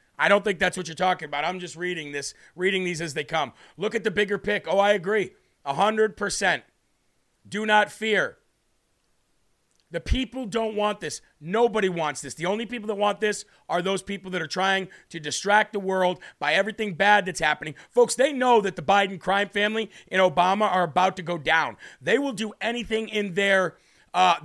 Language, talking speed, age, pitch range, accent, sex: English, 200 wpm, 40-59, 175-210 Hz, American, male